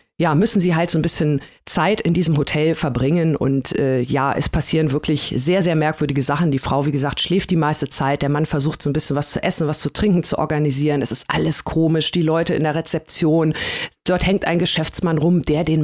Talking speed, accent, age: 225 wpm, German, 40-59